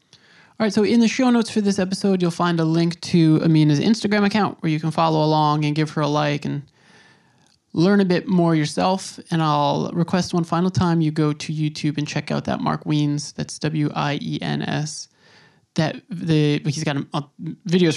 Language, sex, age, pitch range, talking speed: English, male, 20-39, 150-185 Hz, 190 wpm